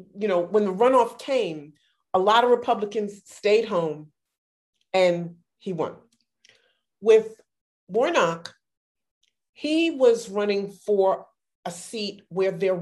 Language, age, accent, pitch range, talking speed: English, 40-59, American, 175-220 Hz, 115 wpm